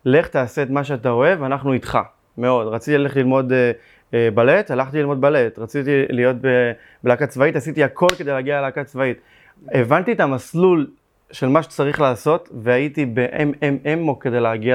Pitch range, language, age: 120-150 Hz, Hebrew, 20-39